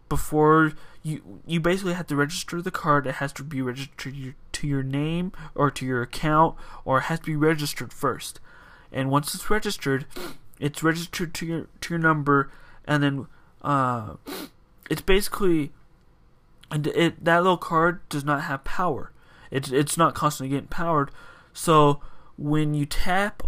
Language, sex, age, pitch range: English, male, 20-39, 140-170 Hz